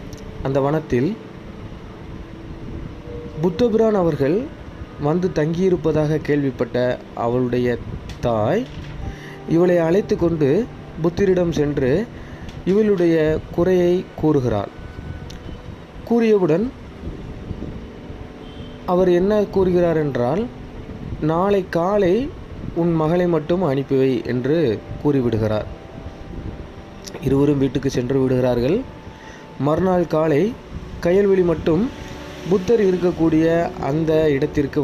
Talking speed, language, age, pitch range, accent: 70 wpm, Tamil, 30-49, 135-195 Hz, native